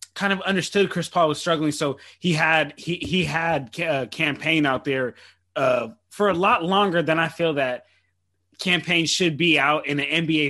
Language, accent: English, American